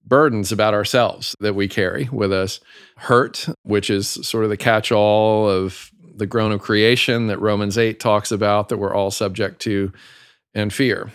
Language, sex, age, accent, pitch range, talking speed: English, male, 40-59, American, 100-120 Hz, 170 wpm